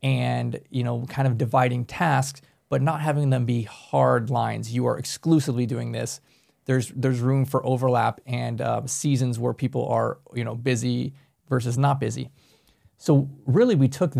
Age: 30-49